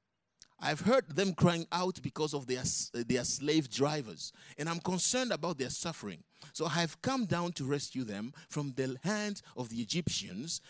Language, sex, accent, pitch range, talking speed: English, male, Nigerian, 130-185 Hz, 175 wpm